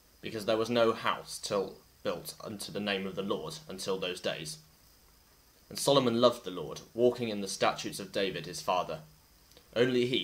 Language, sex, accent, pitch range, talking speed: English, male, British, 80-115 Hz, 180 wpm